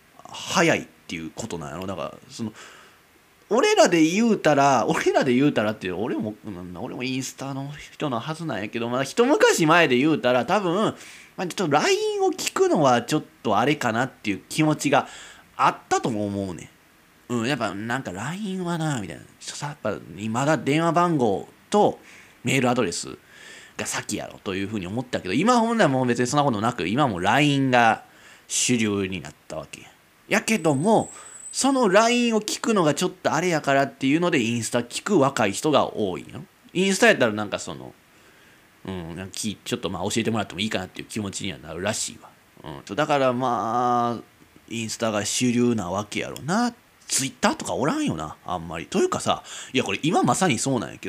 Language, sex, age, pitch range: Japanese, male, 20-39, 105-175 Hz